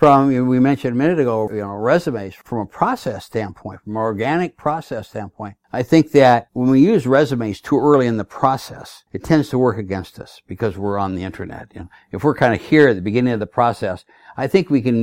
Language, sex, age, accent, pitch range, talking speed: English, male, 60-79, American, 110-135 Hz, 225 wpm